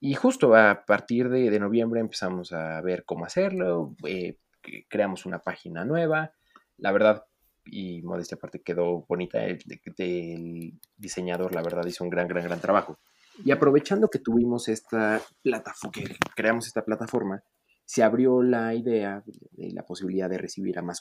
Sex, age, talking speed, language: male, 30-49, 160 wpm, Spanish